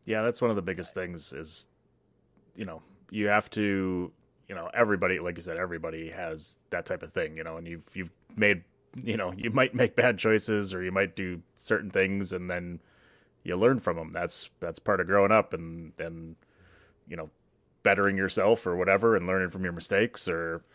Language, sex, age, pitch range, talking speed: English, male, 30-49, 85-100 Hz, 200 wpm